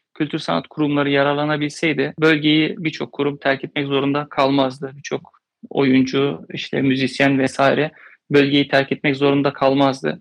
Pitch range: 135-160 Hz